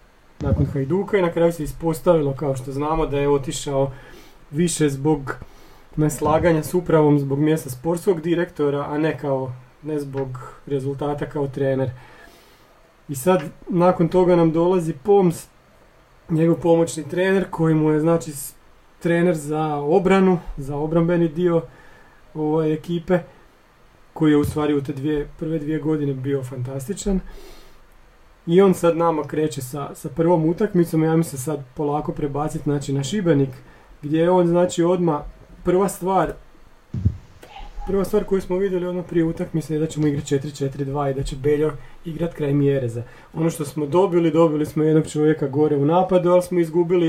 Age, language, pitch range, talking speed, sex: 30-49, Croatian, 145-175 Hz, 155 wpm, male